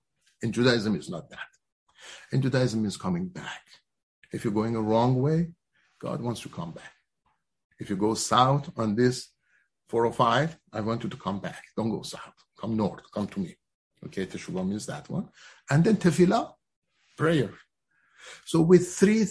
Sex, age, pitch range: male, 50-69, 110-145 Hz